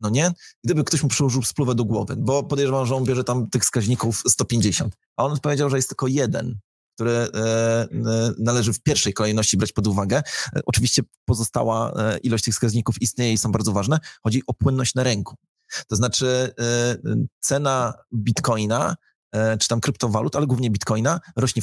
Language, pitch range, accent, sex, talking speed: Polish, 110-135 Hz, native, male, 165 wpm